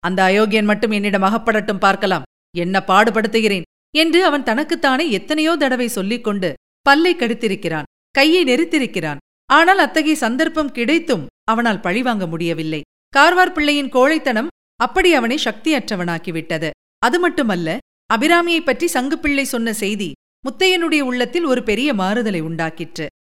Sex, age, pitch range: female, 50-69, 200-300 Hz